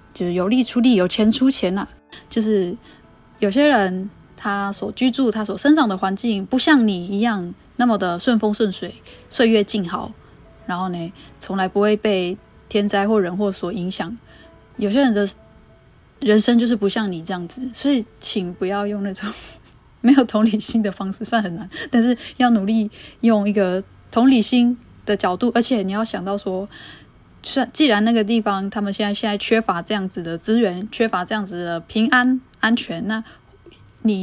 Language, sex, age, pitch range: Chinese, female, 10-29, 190-225 Hz